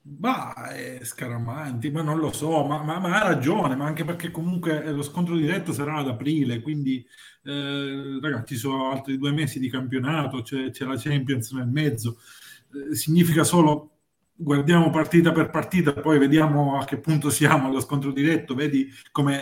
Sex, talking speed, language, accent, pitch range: male, 165 wpm, Italian, native, 120-150 Hz